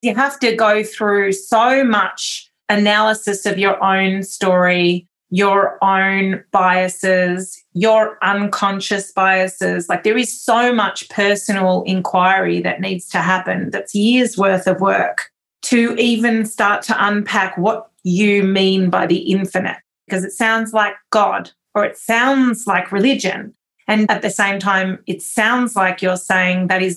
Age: 30-49